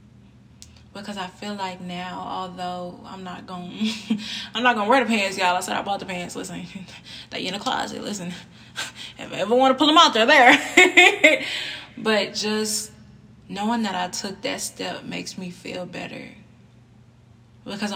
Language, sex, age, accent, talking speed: English, female, 20-39, American, 165 wpm